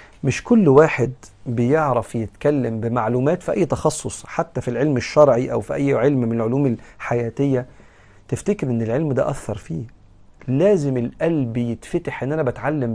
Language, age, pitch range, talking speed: Arabic, 40-59, 120-150 Hz, 150 wpm